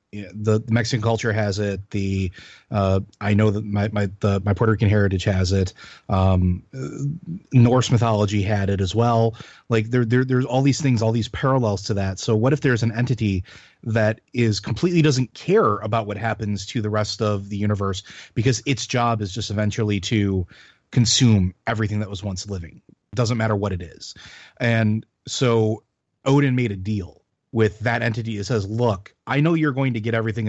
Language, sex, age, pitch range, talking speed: English, male, 30-49, 105-135 Hz, 190 wpm